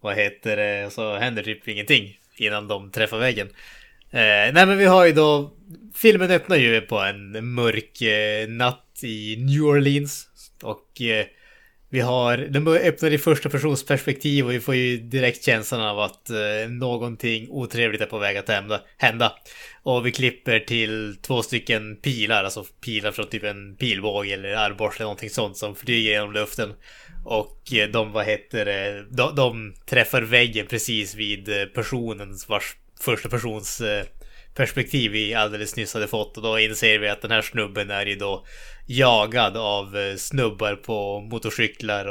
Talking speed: 160 wpm